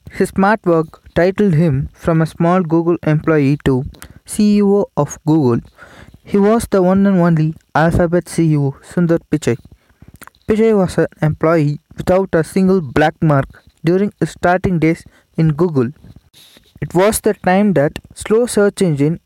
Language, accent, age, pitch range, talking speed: Tamil, native, 20-39, 155-195 Hz, 145 wpm